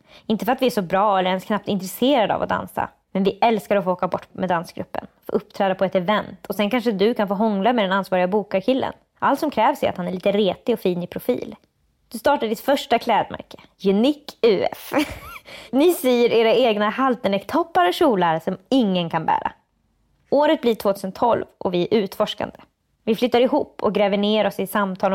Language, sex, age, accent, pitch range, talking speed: English, female, 20-39, Swedish, 195-240 Hz, 205 wpm